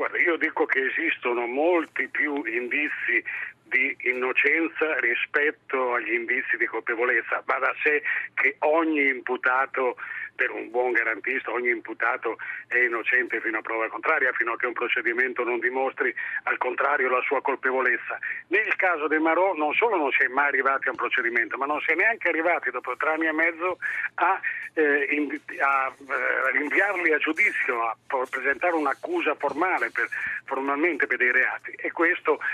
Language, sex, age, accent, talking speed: Italian, male, 40-59, native, 165 wpm